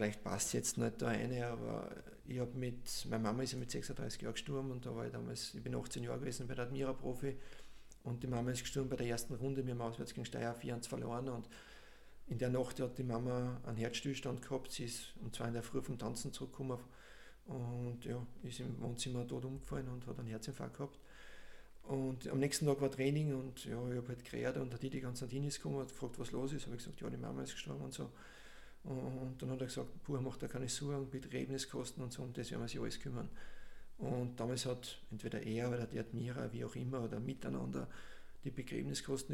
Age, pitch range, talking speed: 50-69, 120-135 Hz, 225 wpm